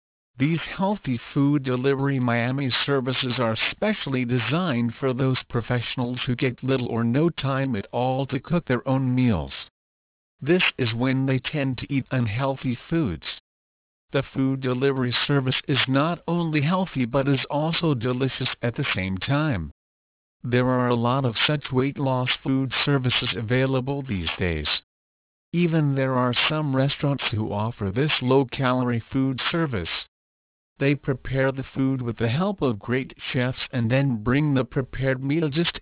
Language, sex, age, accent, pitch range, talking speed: English, male, 50-69, American, 115-140 Hz, 150 wpm